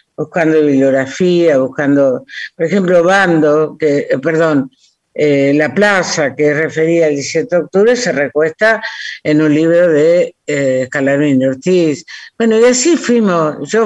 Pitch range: 150-195 Hz